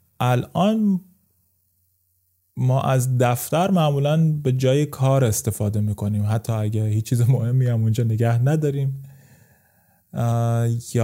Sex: male